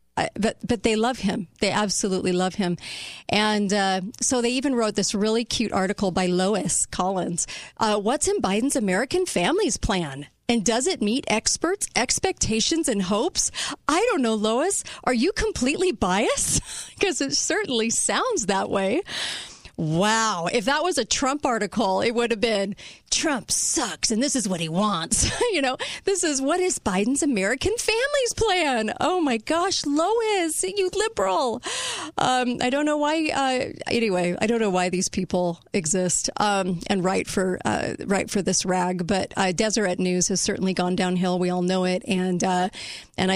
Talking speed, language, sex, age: 170 wpm, English, female, 40-59